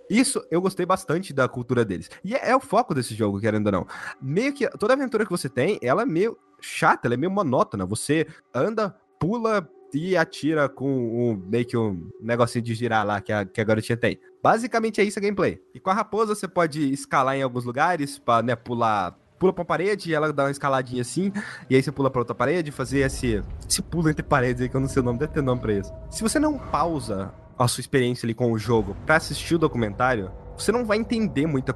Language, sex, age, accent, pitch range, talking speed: Portuguese, male, 20-39, Brazilian, 120-180 Hz, 235 wpm